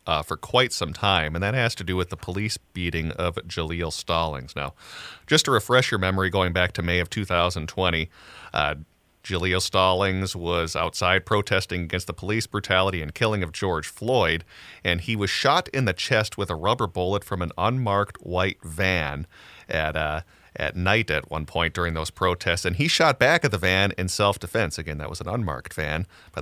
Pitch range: 85-110 Hz